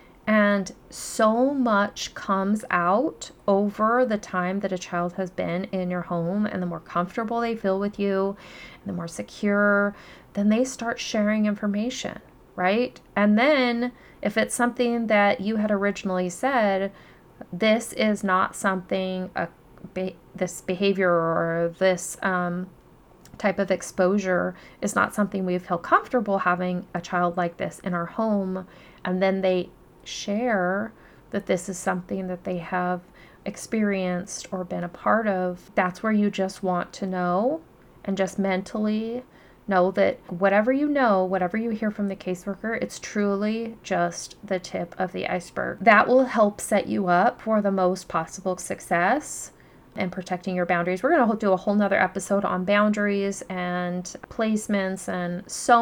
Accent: American